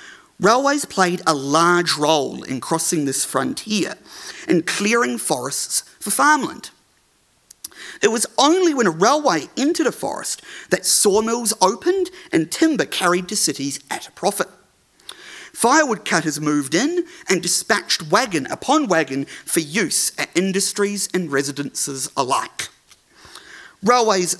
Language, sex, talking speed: English, male, 125 wpm